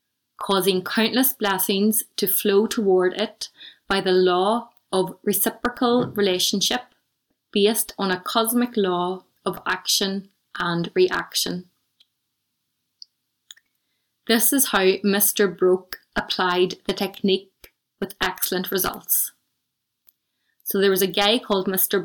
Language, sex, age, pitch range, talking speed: English, female, 20-39, 185-220 Hz, 110 wpm